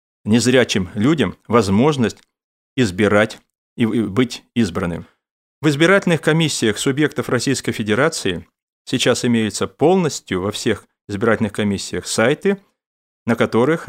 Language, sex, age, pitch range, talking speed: Russian, male, 30-49, 110-145 Hz, 100 wpm